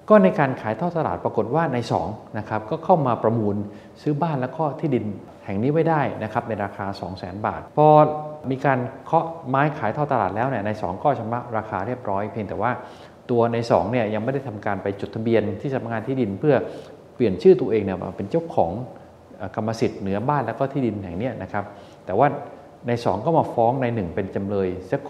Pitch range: 105-145 Hz